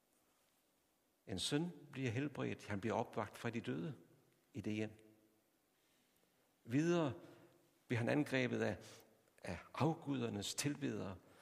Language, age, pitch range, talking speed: Danish, 60-79, 110-150 Hz, 110 wpm